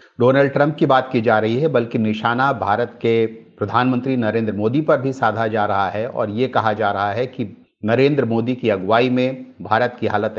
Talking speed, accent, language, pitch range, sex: 210 wpm, native, Hindi, 110-140 Hz, male